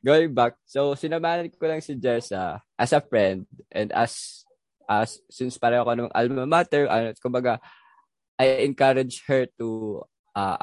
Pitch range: 115-145 Hz